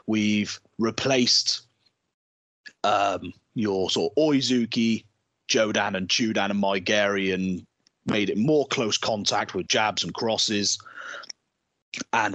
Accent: British